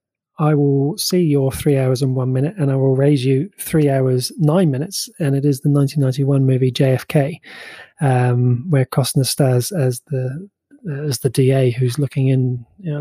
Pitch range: 135-160 Hz